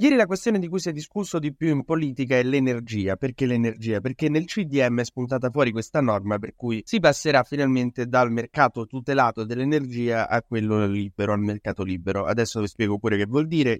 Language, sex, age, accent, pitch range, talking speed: Italian, male, 20-39, native, 110-135 Hz, 200 wpm